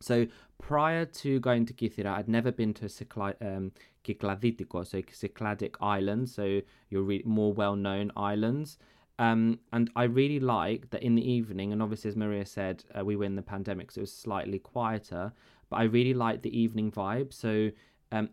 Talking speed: 185 wpm